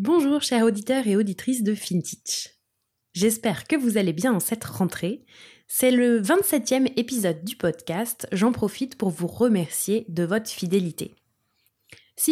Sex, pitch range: female, 190-255 Hz